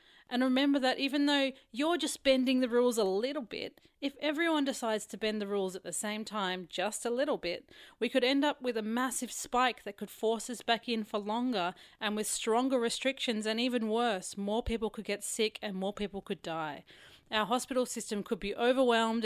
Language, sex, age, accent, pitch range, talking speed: English, female, 30-49, Australian, 205-255 Hz, 210 wpm